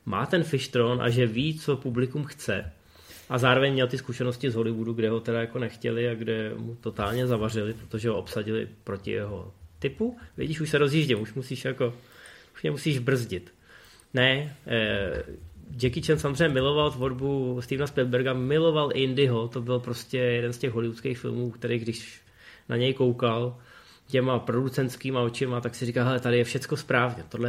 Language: Czech